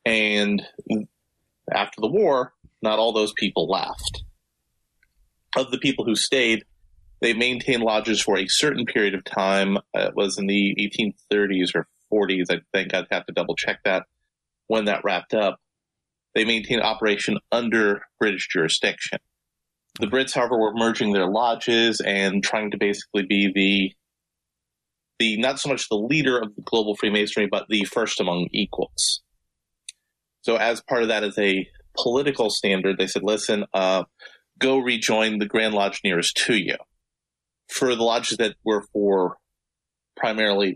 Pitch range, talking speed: 95-115 Hz, 155 wpm